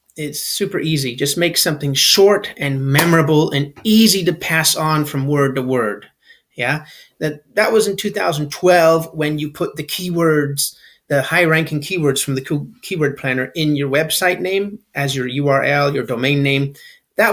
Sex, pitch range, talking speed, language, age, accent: male, 140-175 Hz, 165 wpm, English, 30-49, American